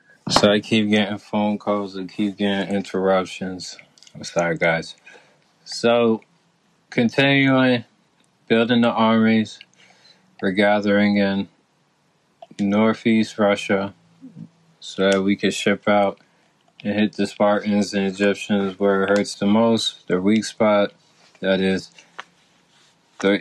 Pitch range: 100-125 Hz